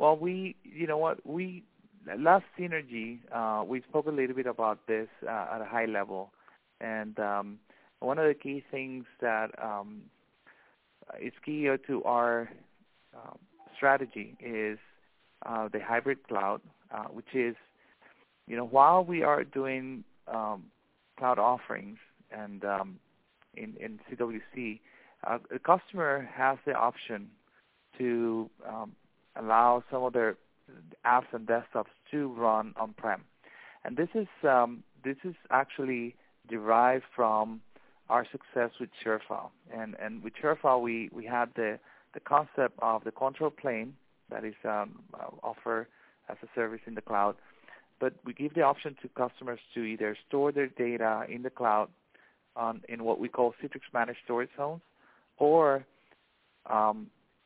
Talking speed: 145 wpm